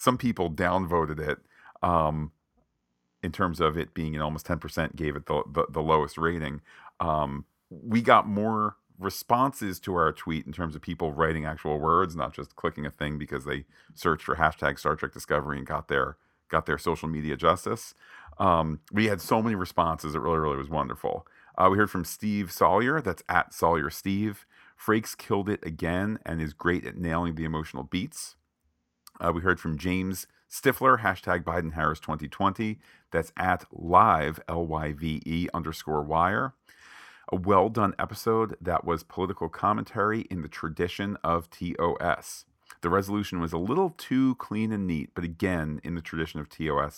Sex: male